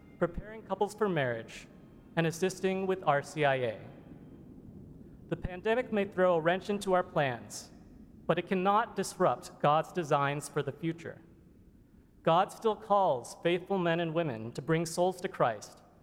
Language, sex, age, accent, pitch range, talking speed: English, male, 30-49, American, 140-185 Hz, 140 wpm